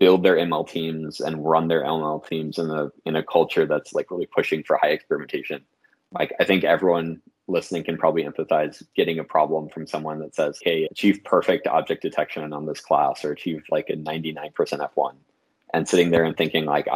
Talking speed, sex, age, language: 195 wpm, male, 20-39, English